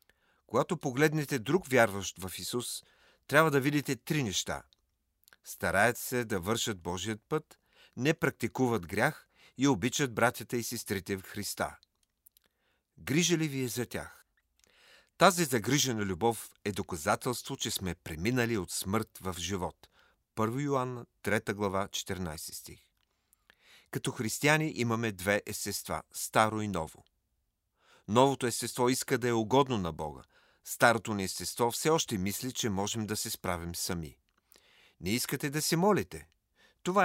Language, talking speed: Bulgarian, 135 wpm